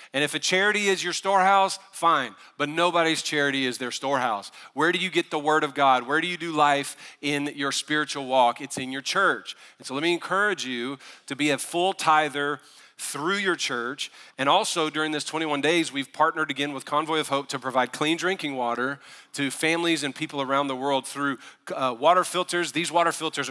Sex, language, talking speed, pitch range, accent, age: male, English, 205 wpm, 135-160 Hz, American, 40-59